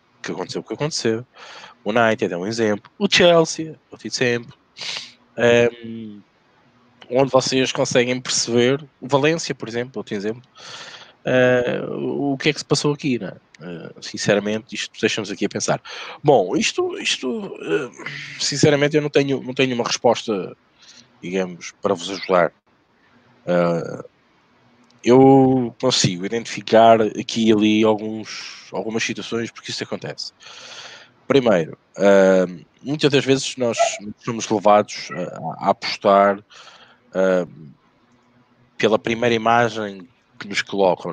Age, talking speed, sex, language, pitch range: 20-39, 130 wpm, male, Portuguese, 100-125 Hz